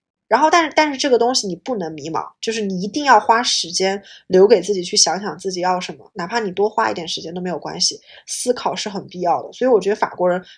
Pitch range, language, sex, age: 185-240 Hz, Chinese, female, 20-39